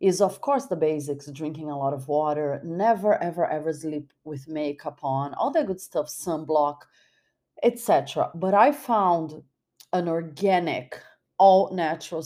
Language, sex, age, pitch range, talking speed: English, female, 30-49, 155-195 Hz, 140 wpm